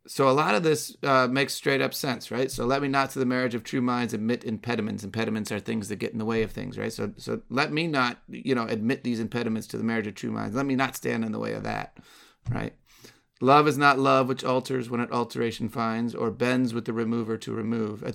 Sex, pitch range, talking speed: male, 110-130 Hz, 260 wpm